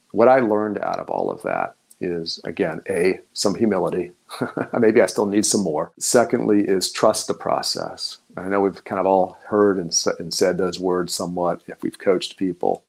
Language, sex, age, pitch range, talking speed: English, male, 40-59, 95-115 Hz, 190 wpm